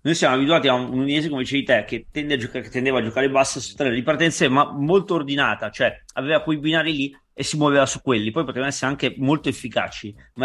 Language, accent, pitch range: Italian, native, 135-165 Hz